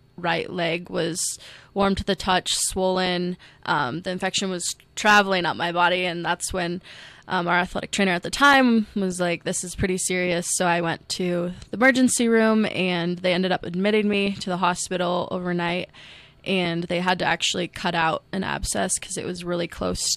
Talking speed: 185 wpm